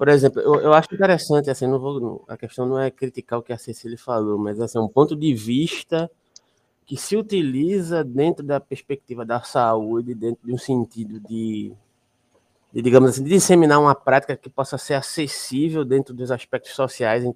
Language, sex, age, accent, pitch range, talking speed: Portuguese, male, 20-39, Brazilian, 120-155 Hz, 185 wpm